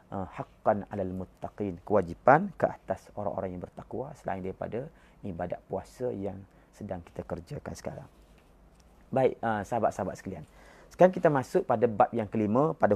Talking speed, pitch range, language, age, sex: 125 wpm, 100-125 Hz, Malay, 30-49, male